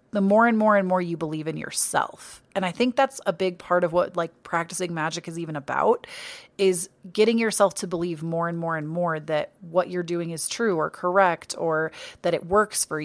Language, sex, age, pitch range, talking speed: English, female, 30-49, 175-215 Hz, 220 wpm